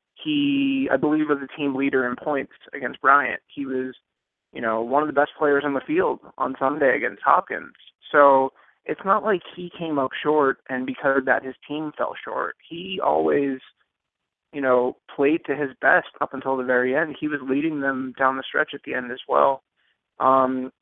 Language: English